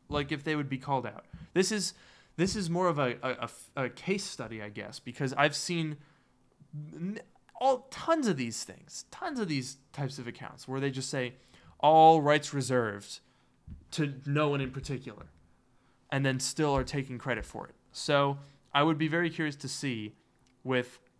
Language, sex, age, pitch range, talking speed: English, male, 20-39, 120-145 Hz, 180 wpm